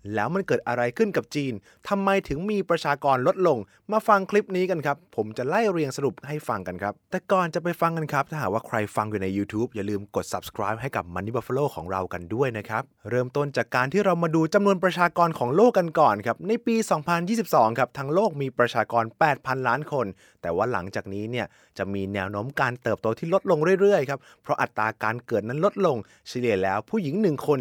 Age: 20-39